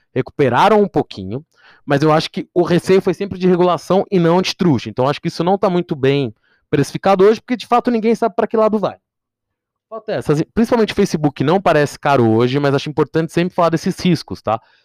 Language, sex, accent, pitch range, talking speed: English, male, Brazilian, 135-185 Hz, 205 wpm